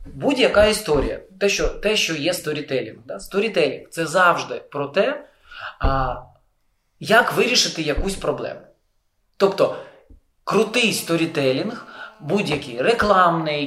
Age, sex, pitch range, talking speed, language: 20-39, male, 140-195 Hz, 110 wpm, Ukrainian